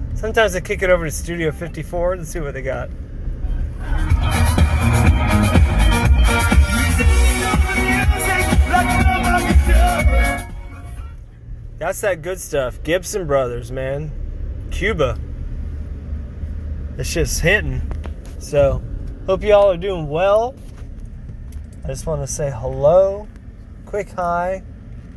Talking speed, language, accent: 90 wpm, English, American